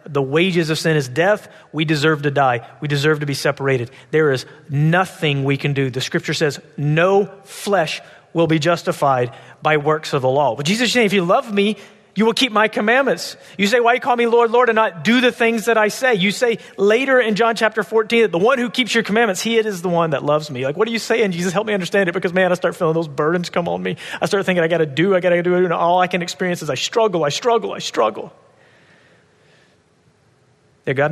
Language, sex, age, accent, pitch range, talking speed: English, male, 30-49, American, 130-190 Hz, 245 wpm